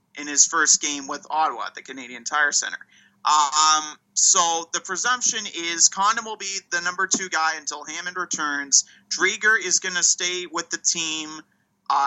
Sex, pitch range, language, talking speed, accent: male, 155-200 Hz, English, 170 wpm, American